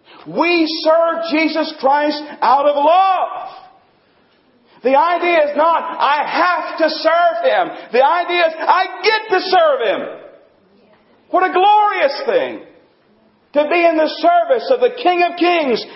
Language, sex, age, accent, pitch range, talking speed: English, male, 50-69, American, 245-345 Hz, 145 wpm